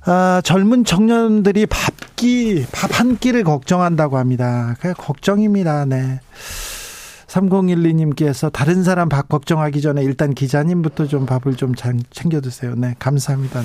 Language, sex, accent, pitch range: Korean, male, native, 130-185 Hz